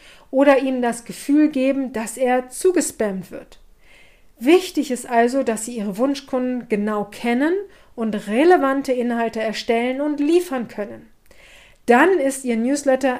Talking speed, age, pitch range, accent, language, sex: 130 wpm, 40-59, 235-290 Hz, German, German, female